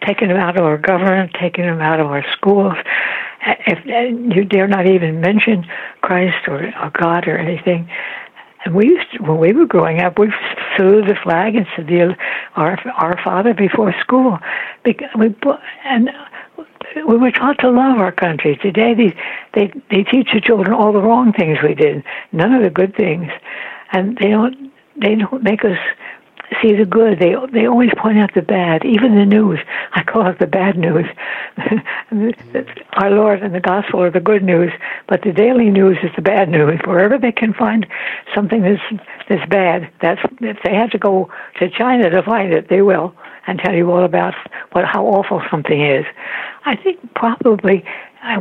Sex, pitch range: female, 180-230 Hz